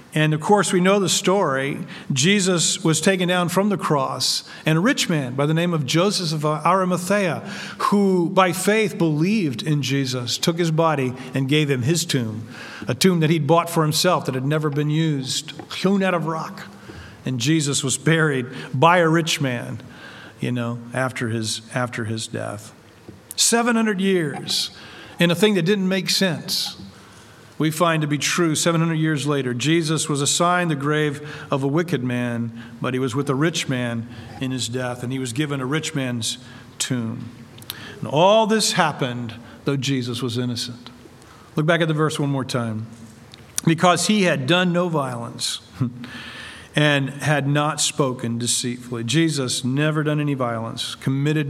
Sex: male